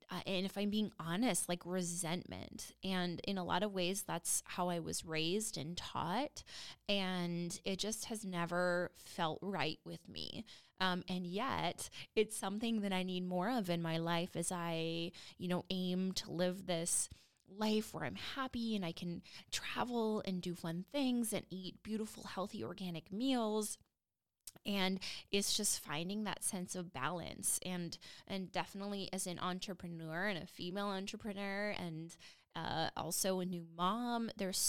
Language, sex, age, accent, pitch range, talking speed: English, female, 20-39, American, 175-200 Hz, 165 wpm